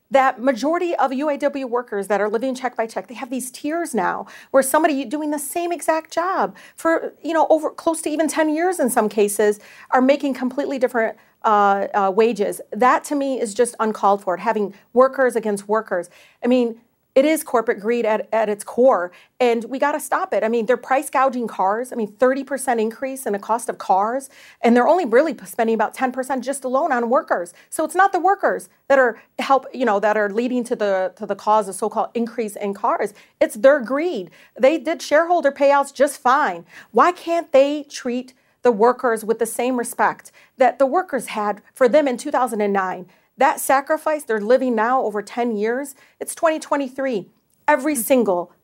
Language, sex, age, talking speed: English, female, 40-59, 195 wpm